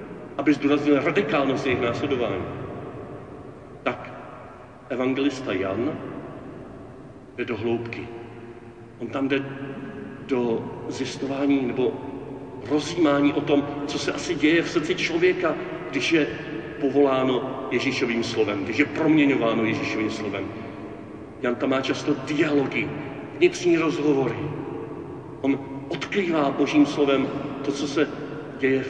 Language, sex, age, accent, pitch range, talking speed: Czech, male, 40-59, native, 130-170 Hz, 110 wpm